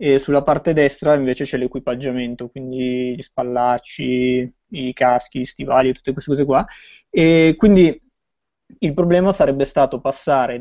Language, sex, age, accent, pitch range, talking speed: Italian, male, 20-39, native, 130-150 Hz, 140 wpm